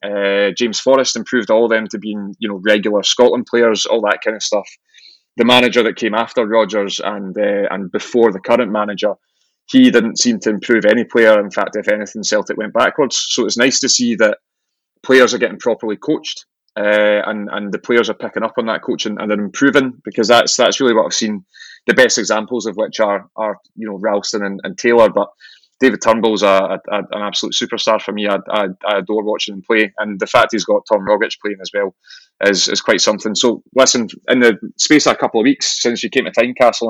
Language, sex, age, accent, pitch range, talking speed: English, male, 20-39, British, 105-120 Hz, 230 wpm